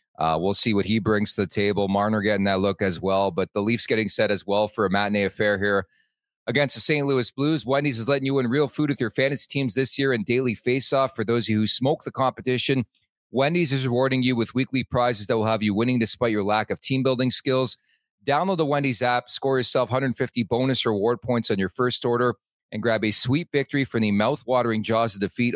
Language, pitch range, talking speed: English, 105-135 Hz, 230 wpm